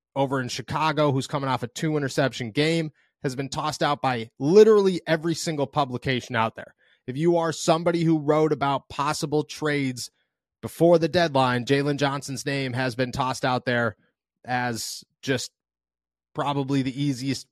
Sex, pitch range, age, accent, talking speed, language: male, 120-150 Hz, 30-49, American, 155 wpm, English